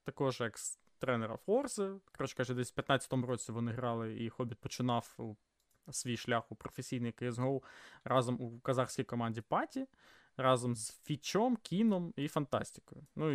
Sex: male